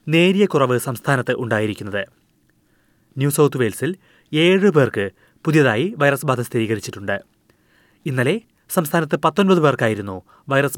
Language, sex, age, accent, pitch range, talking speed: Malayalam, male, 30-49, native, 120-170 Hz, 100 wpm